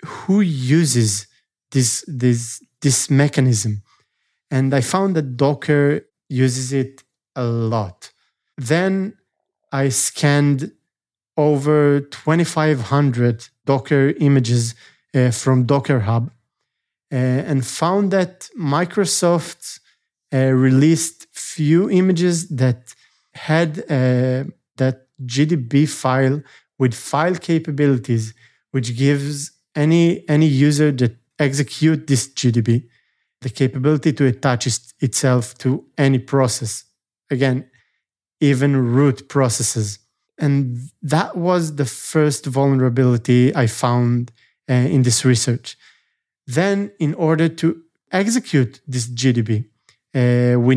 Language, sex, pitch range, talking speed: English, male, 125-155 Hz, 105 wpm